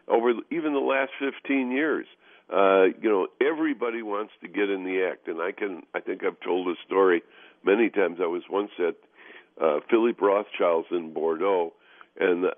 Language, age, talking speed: English, 60-79, 175 wpm